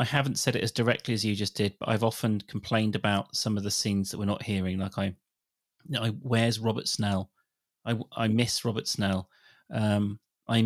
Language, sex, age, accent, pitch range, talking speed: English, male, 30-49, British, 105-125 Hz, 205 wpm